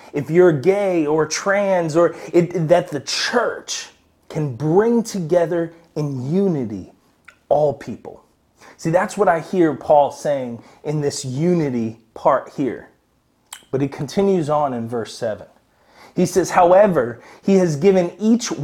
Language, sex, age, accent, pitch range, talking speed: English, male, 30-49, American, 135-180 Hz, 135 wpm